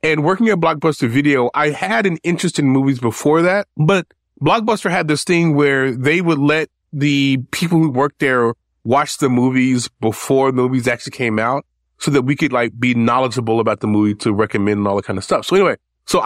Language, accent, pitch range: English, American, 115-155 Hz